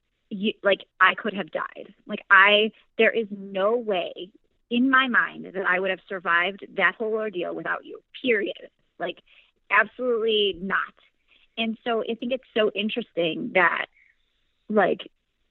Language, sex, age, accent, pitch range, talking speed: English, female, 30-49, American, 190-235 Hz, 145 wpm